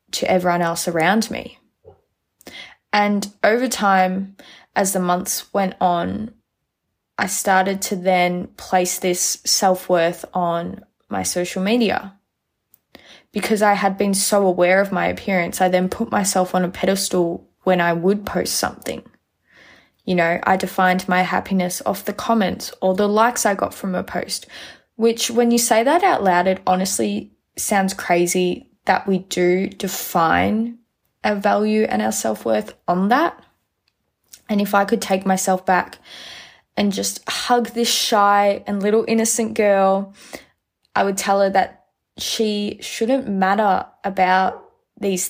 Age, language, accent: 20-39, English, Australian